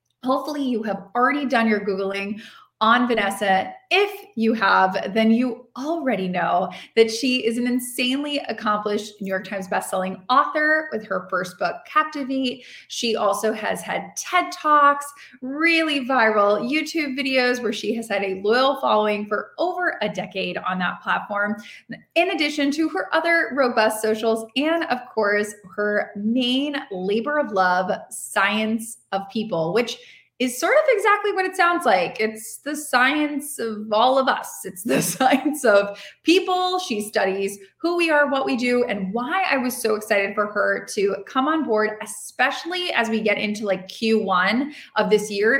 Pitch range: 205-280 Hz